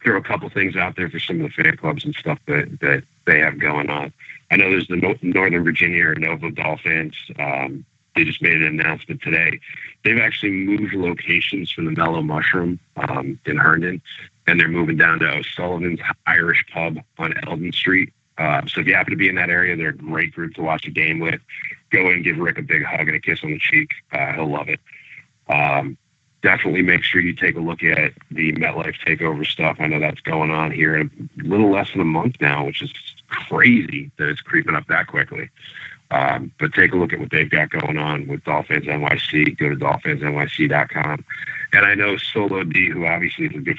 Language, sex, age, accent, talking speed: English, male, 40-59, American, 215 wpm